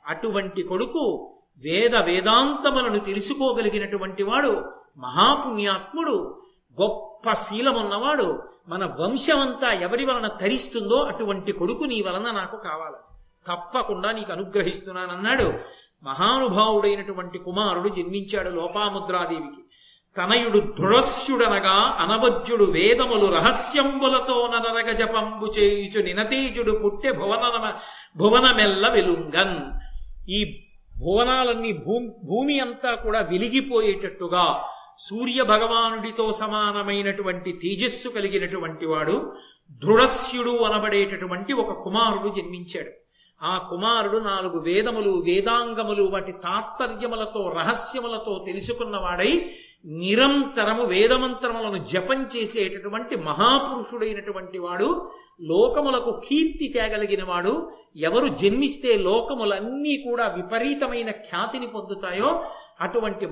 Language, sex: Telugu, male